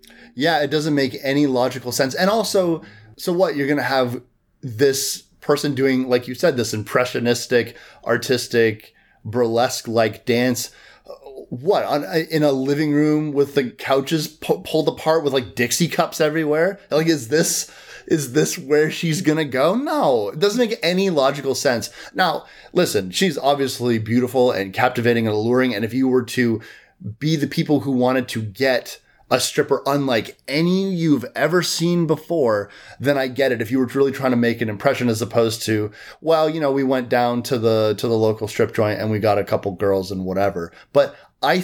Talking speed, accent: 185 wpm, American